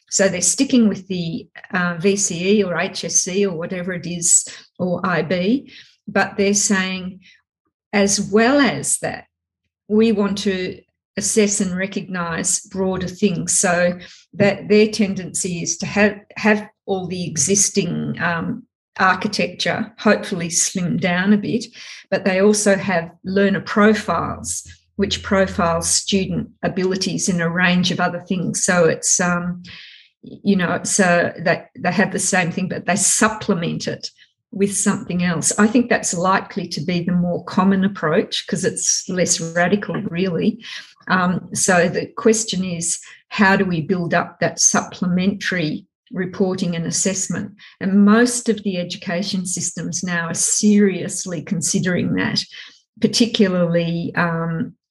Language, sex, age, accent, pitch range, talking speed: English, female, 50-69, Australian, 175-205 Hz, 140 wpm